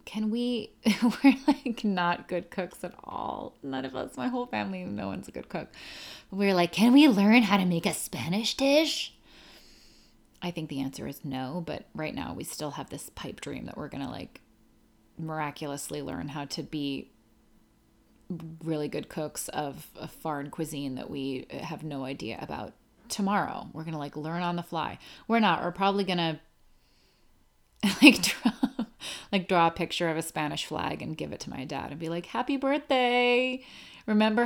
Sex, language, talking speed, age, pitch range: female, English, 185 wpm, 30-49, 155-220 Hz